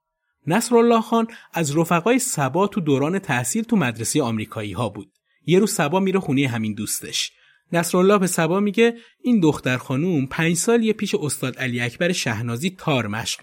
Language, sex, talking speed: Persian, male, 165 wpm